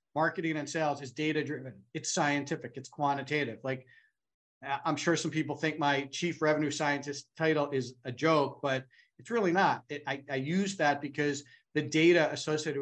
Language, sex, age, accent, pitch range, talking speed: English, male, 40-59, American, 130-160 Hz, 170 wpm